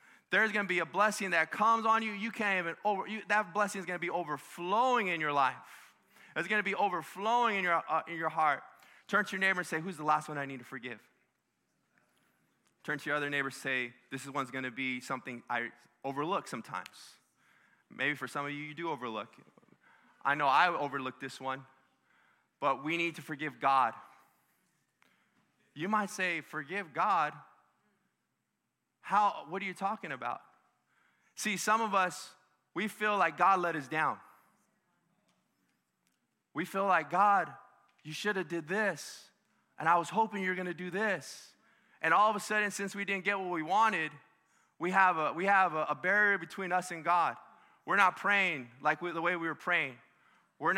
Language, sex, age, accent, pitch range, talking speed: English, male, 20-39, American, 150-200 Hz, 190 wpm